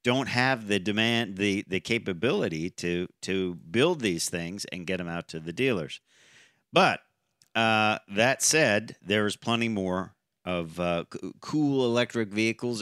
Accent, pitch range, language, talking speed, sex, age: American, 100-135 Hz, English, 145 wpm, male, 50-69